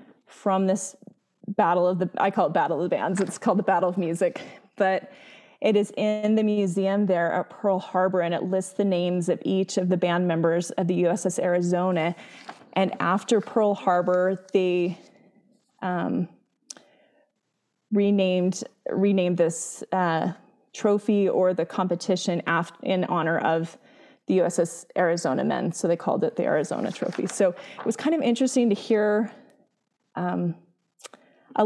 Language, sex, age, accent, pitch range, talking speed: English, female, 20-39, American, 180-210 Hz, 155 wpm